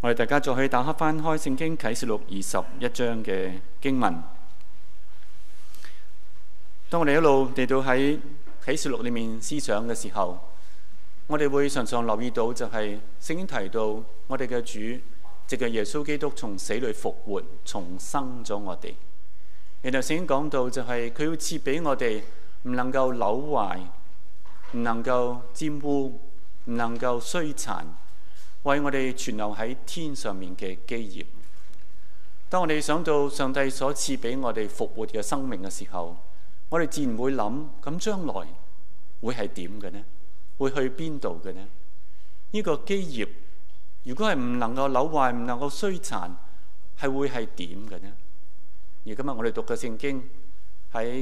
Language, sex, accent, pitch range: Chinese, male, native, 100-135 Hz